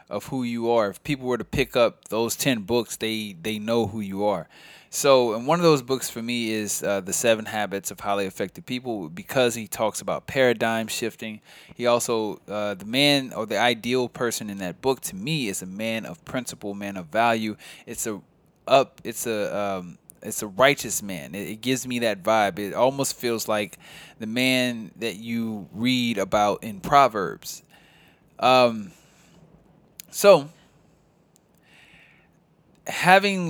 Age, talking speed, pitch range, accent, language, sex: 20-39, 170 wpm, 110-135 Hz, American, English, male